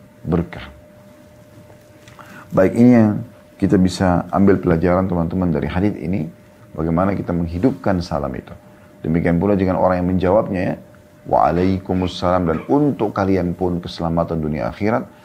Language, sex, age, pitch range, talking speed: Indonesian, male, 30-49, 85-105 Hz, 125 wpm